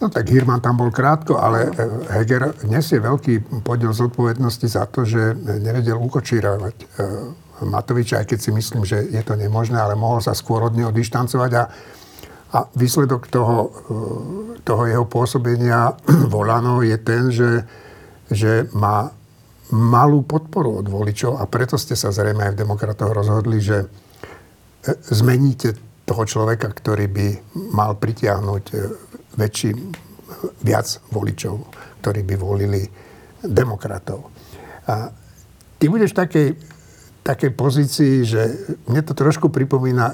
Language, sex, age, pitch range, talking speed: Slovak, male, 60-79, 110-135 Hz, 130 wpm